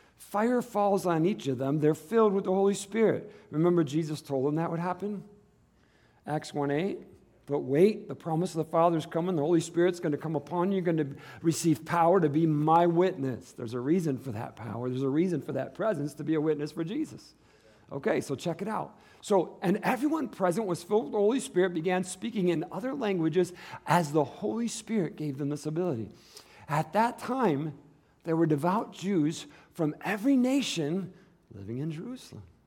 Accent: American